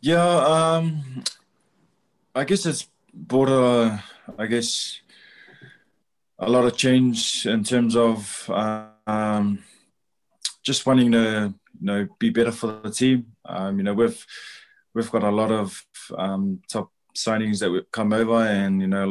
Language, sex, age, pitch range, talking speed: English, male, 20-39, 100-115 Hz, 150 wpm